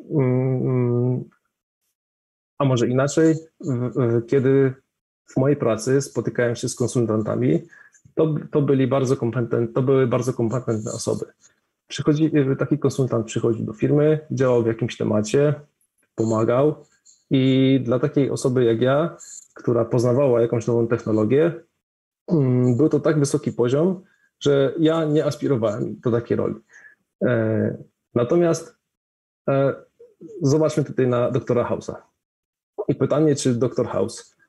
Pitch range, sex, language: 120-145 Hz, male, Polish